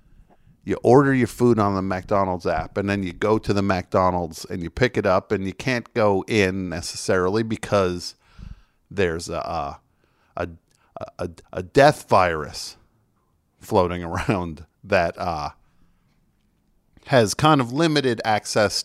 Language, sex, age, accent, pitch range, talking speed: English, male, 50-69, American, 95-135 Hz, 135 wpm